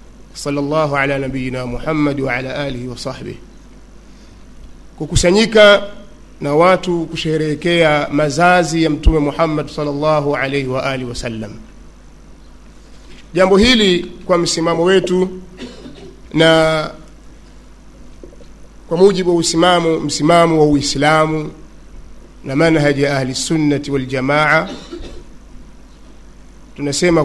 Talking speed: 95 wpm